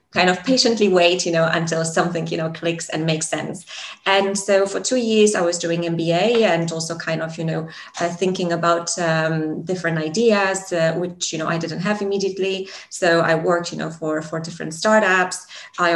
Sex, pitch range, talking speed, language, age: female, 170-195 Hz, 200 wpm, English, 20-39